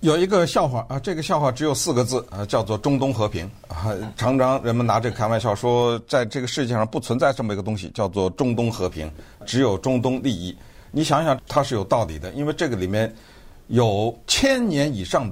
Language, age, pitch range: Chinese, 50-69, 100-130 Hz